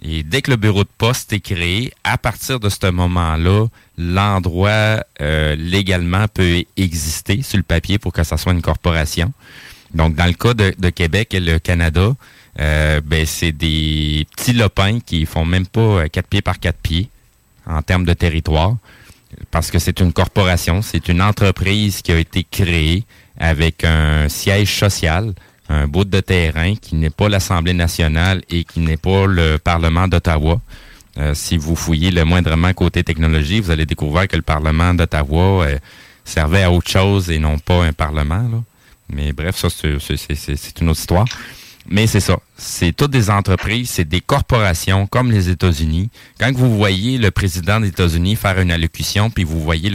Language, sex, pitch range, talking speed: French, male, 80-100 Hz, 175 wpm